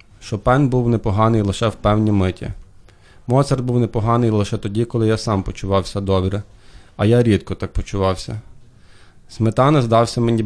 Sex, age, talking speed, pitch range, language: male, 20-39, 145 wpm, 100-115 Hz, Ukrainian